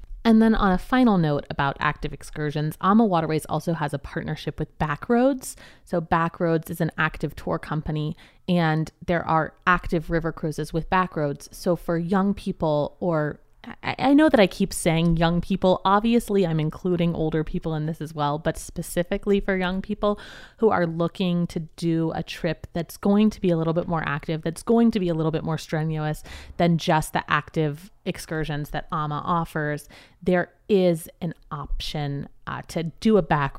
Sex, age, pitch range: female, 30-49, 150-185 Hz